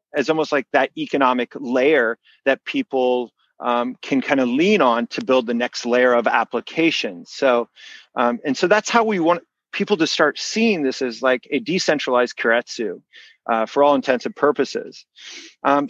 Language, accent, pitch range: English, American, 125-195 Hz